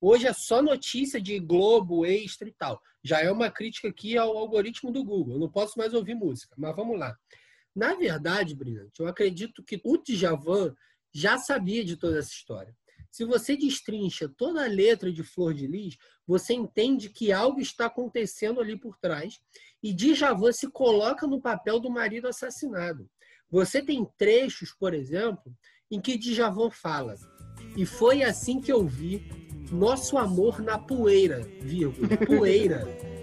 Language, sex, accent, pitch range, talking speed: Portuguese, male, Brazilian, 185-265 Hz, 165 wpm